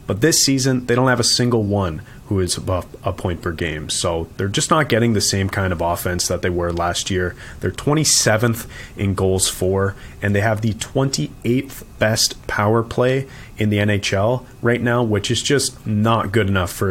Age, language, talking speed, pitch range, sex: 30-49, English, 200 wpm, 95-120 Hz, male